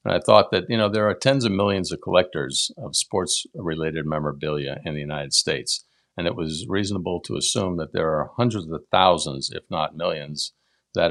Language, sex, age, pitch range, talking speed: English, male, 50-69, 75-90 Hz, 195 wpm